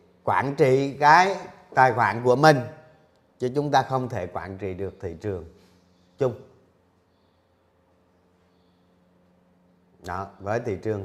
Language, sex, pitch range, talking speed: Vietnamese, male, 90-135 Hz, 115 wpm